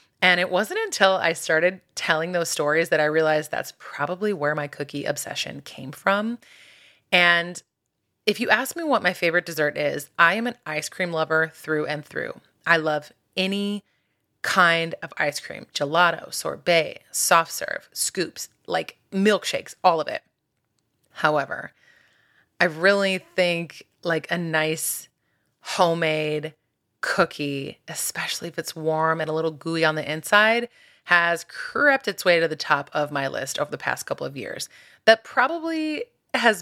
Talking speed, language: 155 wpm, English